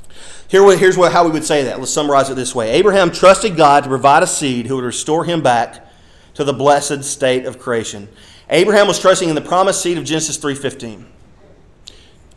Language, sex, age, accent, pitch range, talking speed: English, male, 30-49, American, 145-195 Hz, 190 wpm